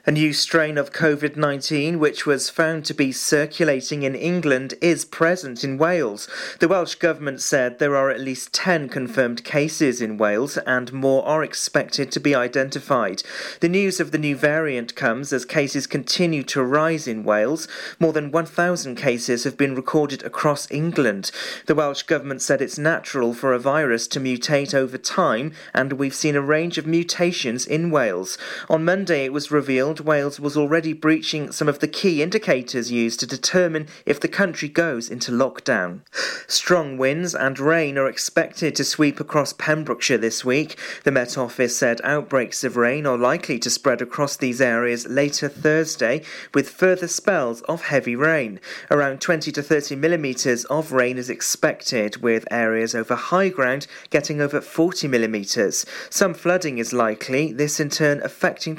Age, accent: 40-59, British